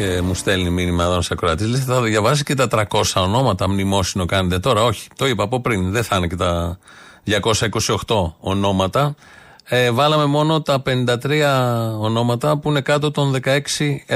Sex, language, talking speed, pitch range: male, Greek, 160 wpm, 105-140 Hz